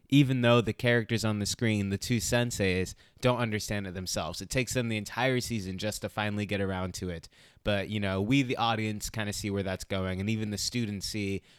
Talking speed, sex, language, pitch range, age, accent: 230 wpm, male, English, 100-120 Hz, 20-39, American